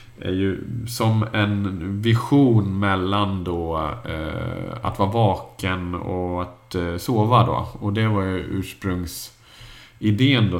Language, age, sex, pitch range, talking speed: Swedish, 30-49, male, 90-110 Hz, 125 wpm